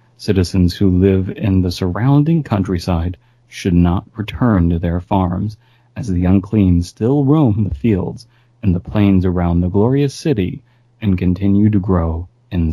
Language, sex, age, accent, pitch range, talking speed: English, male, 30-49, American, 95-120 Hz, 150 wpm